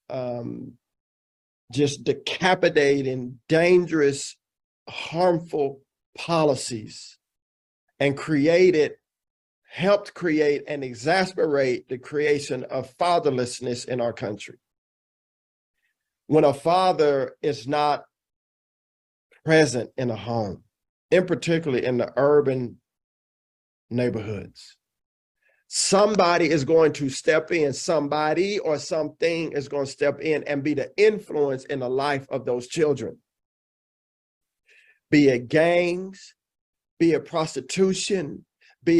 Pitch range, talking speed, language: 125-170 Hz, 100 wpm, English